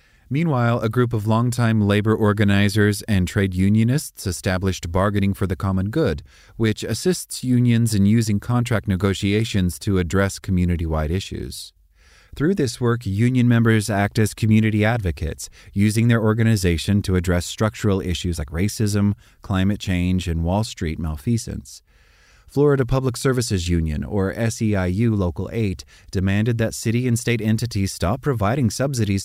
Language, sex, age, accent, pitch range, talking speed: English, male, 30-49, American, 95-115 Hz, 140 wpm